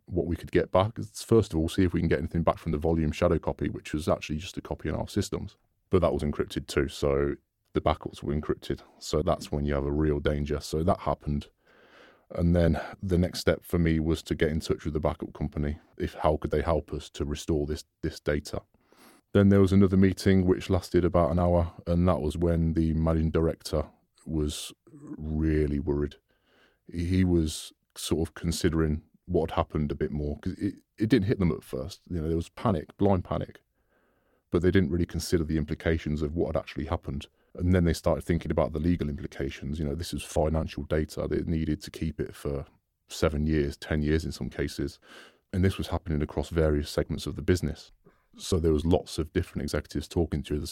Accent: British